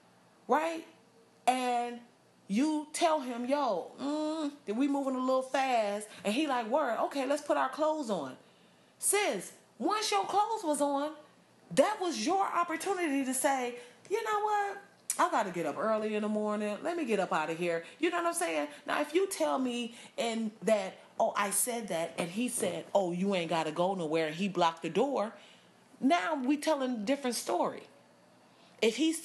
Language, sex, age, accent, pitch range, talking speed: English, female, 30-49, American, 200-290 Hz, 190 wpm